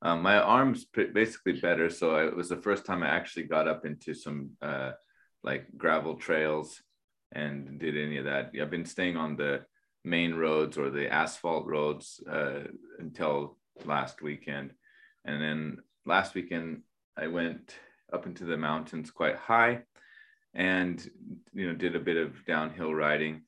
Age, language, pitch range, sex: 20-39, Japanese, 75-90 Hz, male